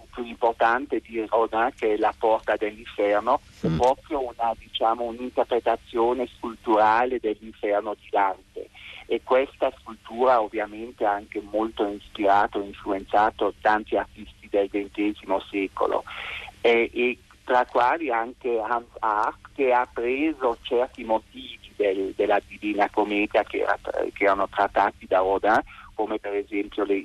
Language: Italian